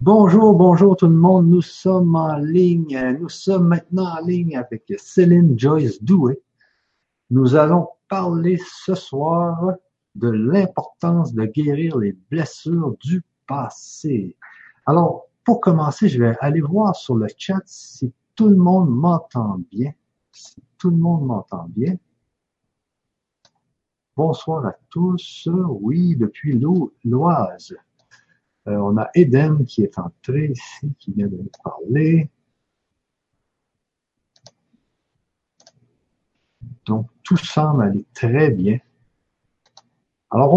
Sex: male